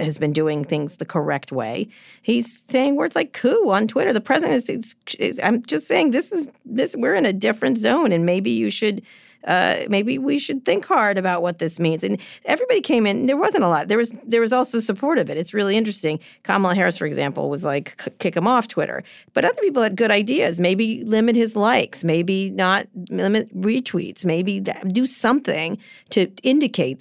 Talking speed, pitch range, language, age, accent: 205 wpm, 165-230 Hz, English, 40-59, American